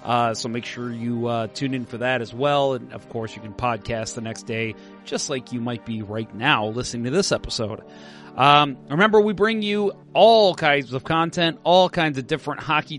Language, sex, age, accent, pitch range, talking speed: English, male, 30-49, American, 120-160 Hz, 210 wpm